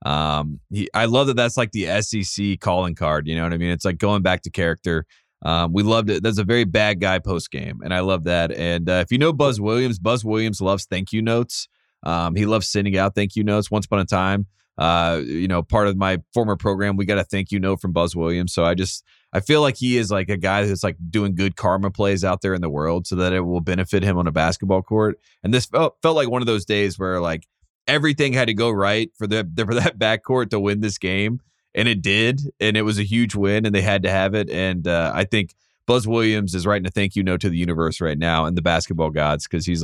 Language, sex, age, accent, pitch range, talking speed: English, male, 30-49, American, 90-110 Hz, 260 wpm